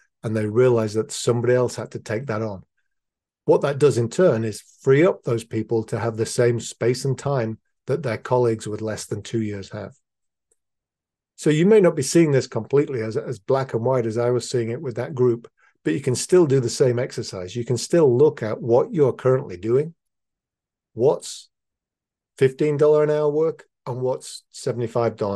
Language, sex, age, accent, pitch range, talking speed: English, male, 50-69, British, 110-130 Hz, 195 wpm